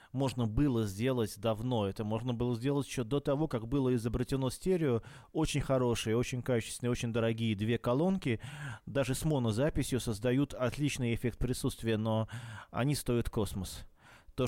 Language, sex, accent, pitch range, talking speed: Russian, male, native, 115-135 Hz, 145 wpm